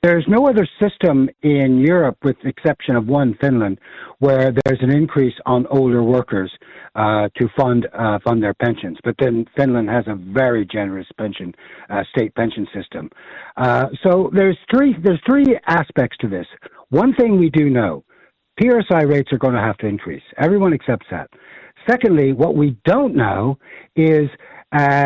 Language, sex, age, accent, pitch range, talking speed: English, male, 60-79, American, 125-165 Hz, 170 wpm